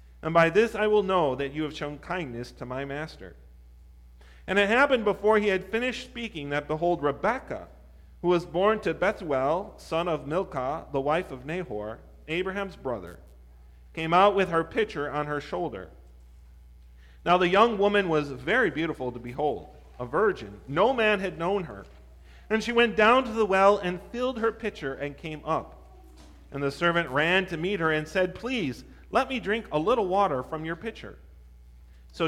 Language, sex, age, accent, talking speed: English, male, 40-59, American, 180 wpm